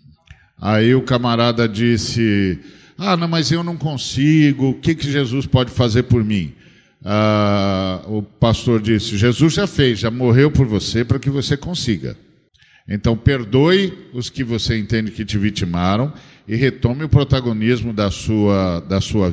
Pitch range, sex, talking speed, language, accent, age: 110-140 Hz, male, 155 wpm, Portuguese, Brazilian, 50-69